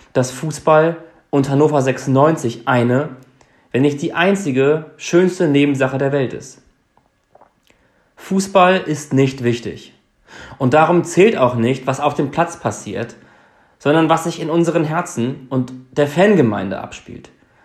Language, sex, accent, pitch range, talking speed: German, male, German, 120-155 Hz, 135 wpm